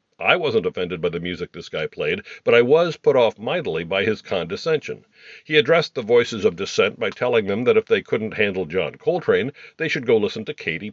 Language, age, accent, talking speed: English, 50-69, American, 220 wpm